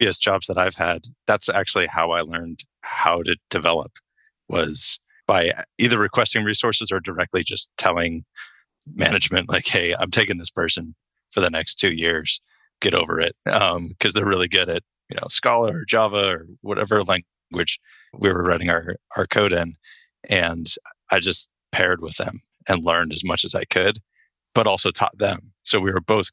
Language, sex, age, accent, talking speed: English, male, 30-49, American, 180 wpm